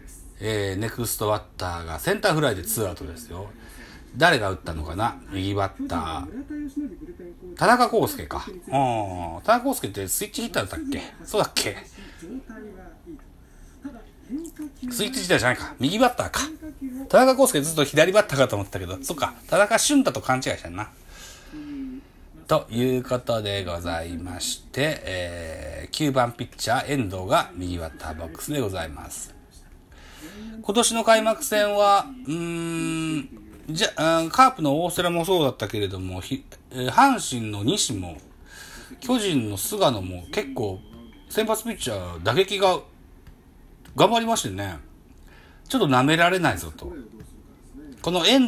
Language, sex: Japanese, male